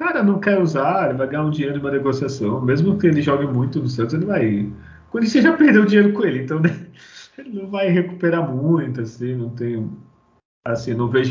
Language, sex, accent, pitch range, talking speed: Portuguese, male, Brazilian, 125-175 Hz, 220 wpm